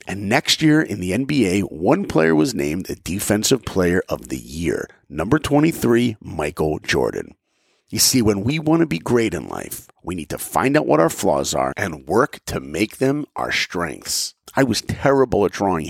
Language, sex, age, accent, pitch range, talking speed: English, male, 50-69, American, 100-135 Hz, 195 wpm